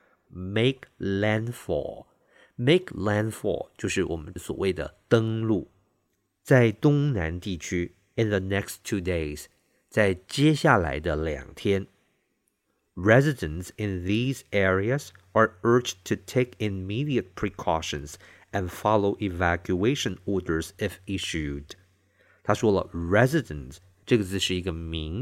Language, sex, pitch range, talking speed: English, male, 90-120 Hz, 65 wpm